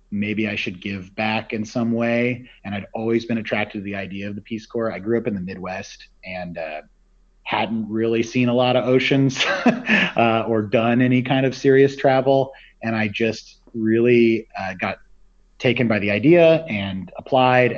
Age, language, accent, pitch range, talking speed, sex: 30-49, English, American, 100-135 Hz, 185 wpm, male